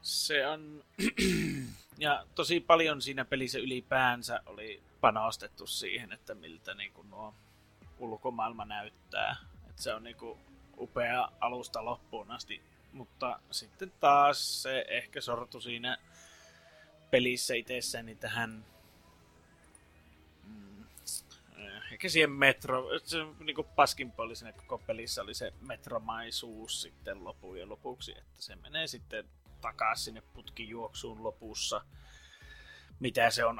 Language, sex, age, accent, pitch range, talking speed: Finnish, male, 30-49, native, 95-135 Hz, 105 wpm